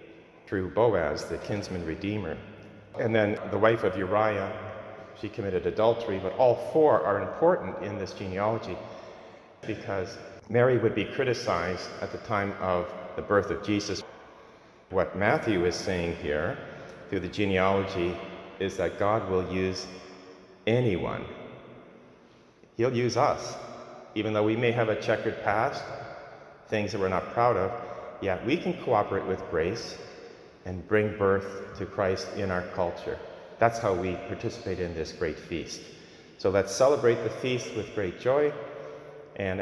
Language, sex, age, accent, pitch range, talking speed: English, male, 40-59, American, 95-115 Hz, 145 wpm